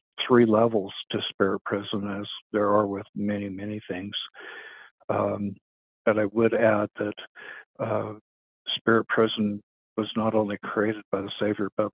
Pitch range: 100-110 Hz